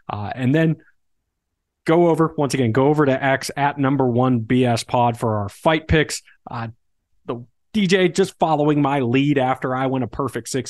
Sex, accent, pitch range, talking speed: male, American, 115-145 Hz, 185 wpm